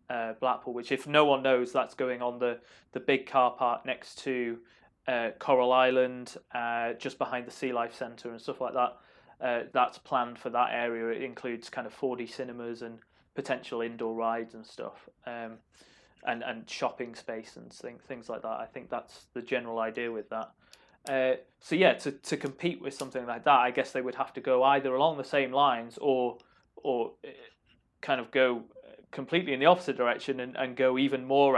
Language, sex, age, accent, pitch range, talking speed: English, male, 20-39, British, 120-135 Hz, 195 wpm